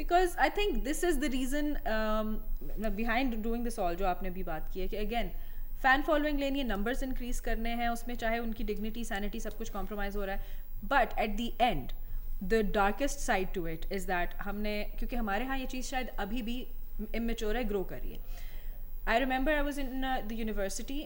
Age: 30-49